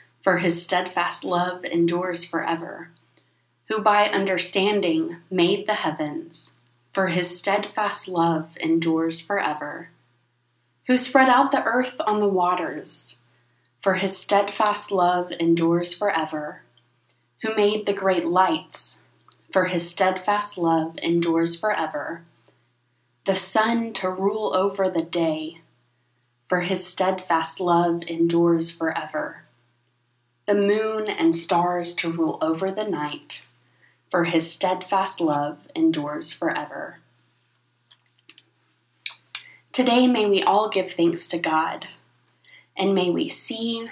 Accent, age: American, 20-39